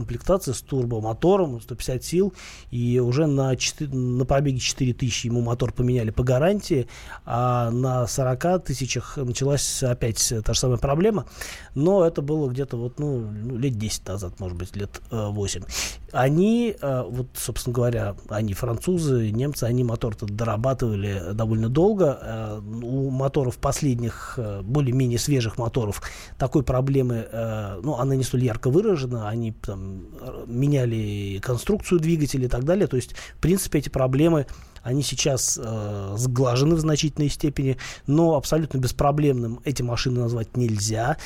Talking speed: 135 wpm